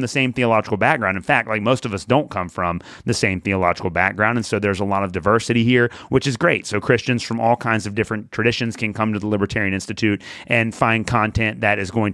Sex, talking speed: male, 235 wpm